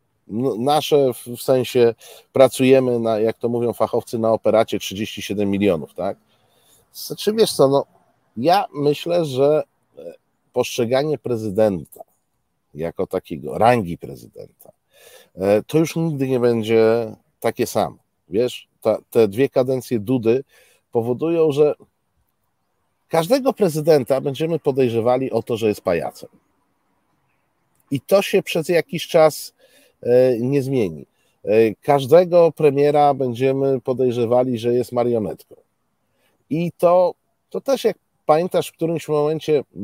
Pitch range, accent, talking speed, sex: 115-165 Hz, native, 115 wpm, male